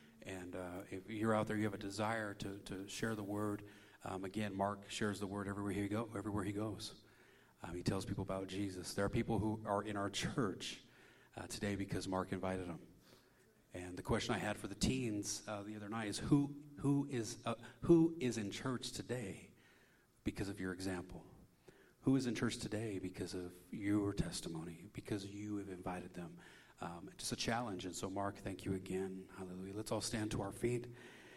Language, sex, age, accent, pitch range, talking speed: English, male, 40-59, American, 95-115 Hz, 200 wpm